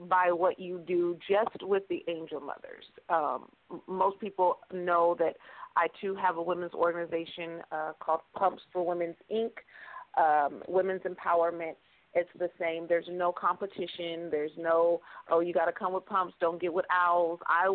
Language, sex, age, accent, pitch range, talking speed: English, female, 40-59, American, 165-185 Hz, 170 wpm